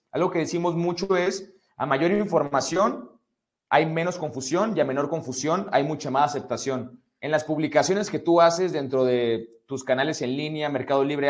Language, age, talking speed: English, 30-49, 175 wpm